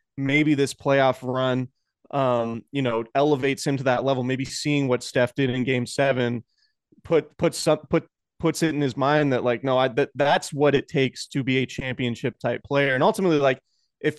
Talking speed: 205 wpm